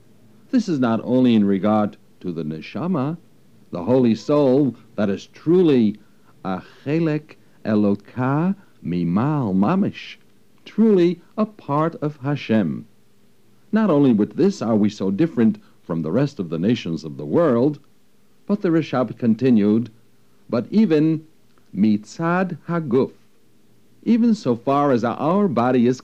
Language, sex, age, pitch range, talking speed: English, male, 60-79, 110-165 Hz, 130 wpm